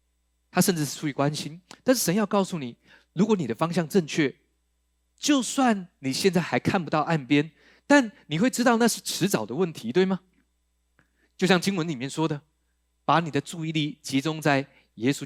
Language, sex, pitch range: Chinese, male, 115-170 Hz